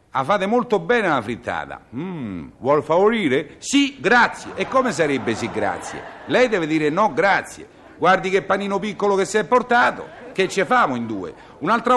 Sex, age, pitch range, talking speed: male, 50-69, 140-210 Hz, 175 wpm